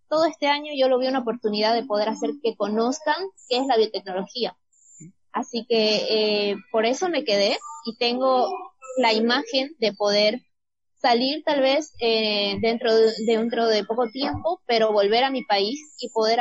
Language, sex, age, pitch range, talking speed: Spanish, female, 20-39, 215-265 Hz, 170 wpm